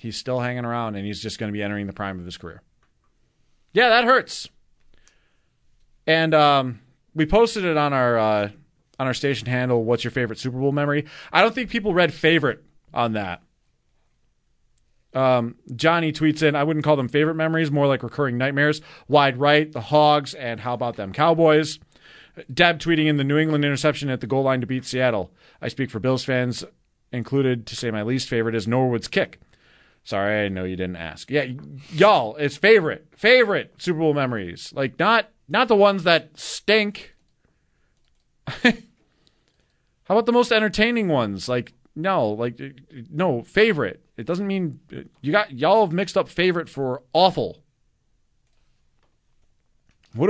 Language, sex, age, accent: English, male, 30-49, American